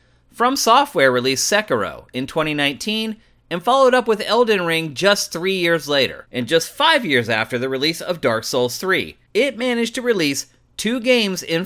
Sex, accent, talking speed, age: male, American, 175 wpm, 30-49